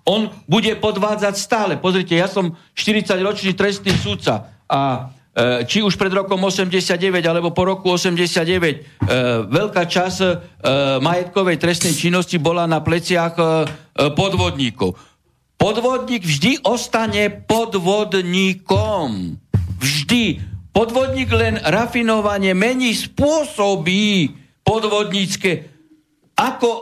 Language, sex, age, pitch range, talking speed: Slovak, male, 60-79, 160-210 Hz, 100 wpm